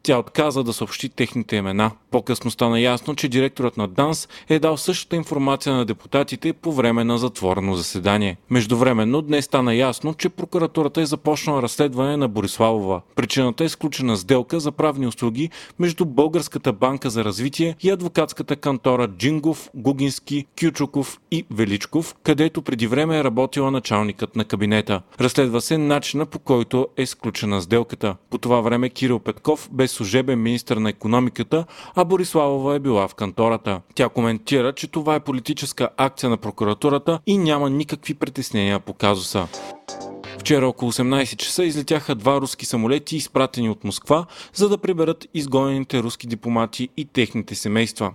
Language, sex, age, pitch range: Bulgarian, male, 40-59, 115-150 Hz